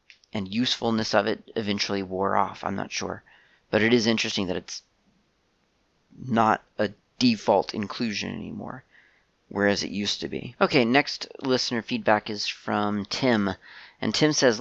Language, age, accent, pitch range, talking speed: English, 30-49, American, 100-115 Hz, 150 wpm